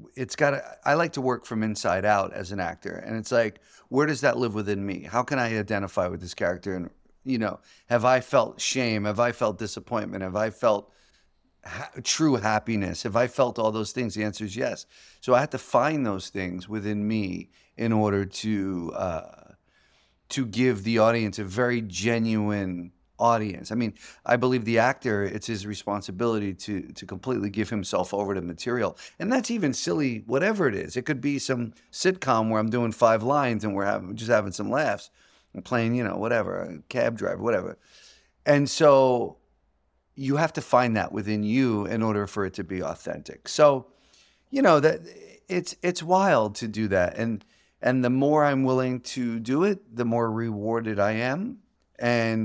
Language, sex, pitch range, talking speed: English, male, 105-125 Hz, 190 wpm